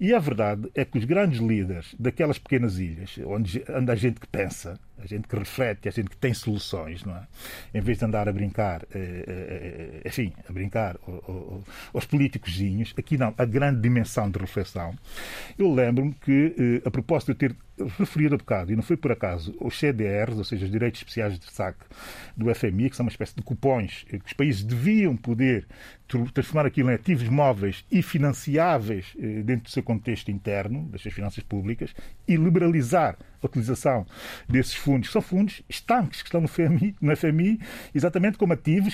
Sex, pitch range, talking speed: male, 105-155 Hz, 185 wpm